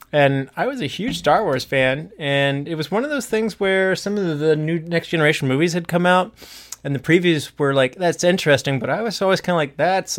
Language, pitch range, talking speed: English, 130-155 Hz, 240 wpm